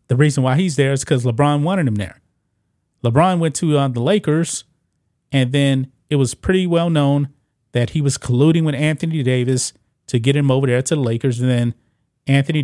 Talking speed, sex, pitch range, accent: 200 wpm, male, 125-155 Hz, American